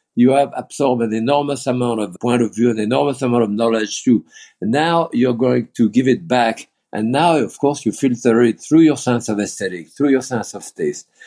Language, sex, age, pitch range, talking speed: English, male, 50-69, 110-130 Hz, 215 wpm